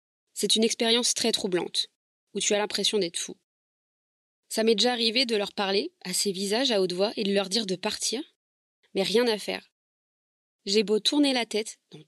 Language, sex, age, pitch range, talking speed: French, female, 20-39, 195-230 Hz, 200 wpm